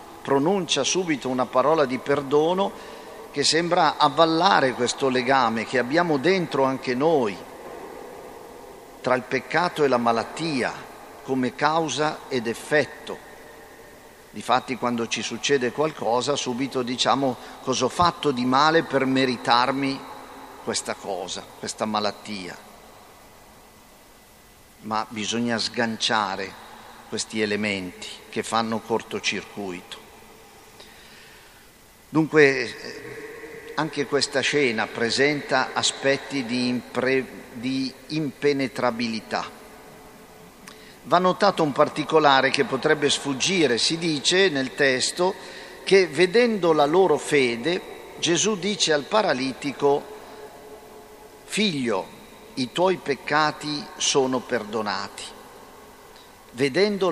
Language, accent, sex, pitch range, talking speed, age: Italian, native, male, 125-165 Hz, 95 wpm, 50-69